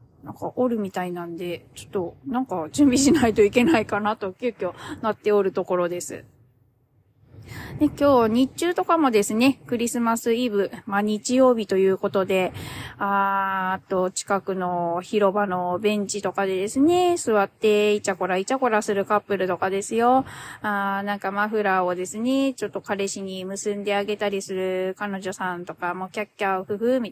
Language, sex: Japanese, female